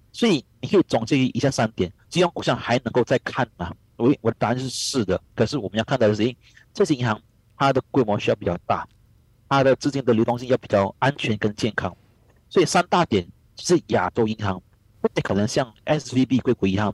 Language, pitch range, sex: Chinese, 105-130 Hz, male